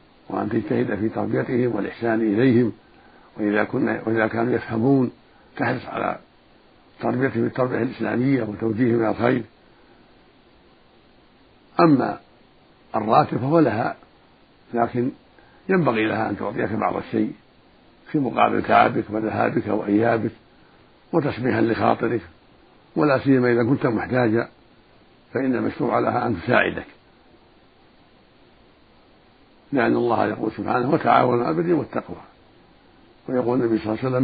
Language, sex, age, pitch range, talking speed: Arabic, male, 60-79, 110-130 Hz, 110 wpm